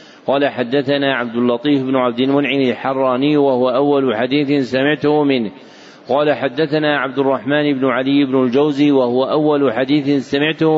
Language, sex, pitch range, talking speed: Arabic, male, 130-150 Hz, 140 wpm